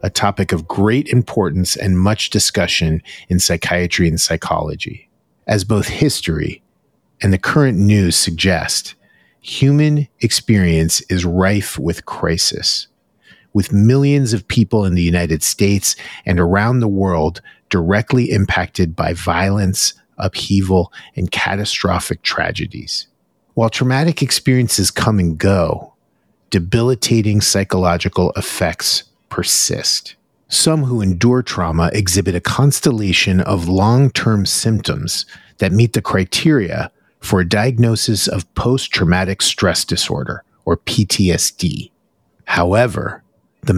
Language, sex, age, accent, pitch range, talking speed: English, male, 40-59, American, 90-115 Hz, 110 wpm